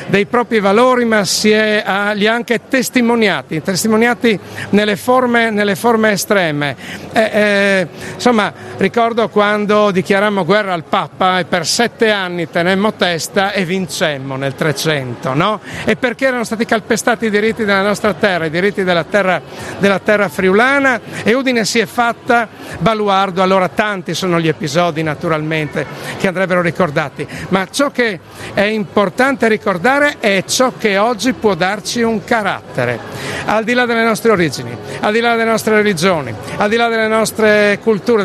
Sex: male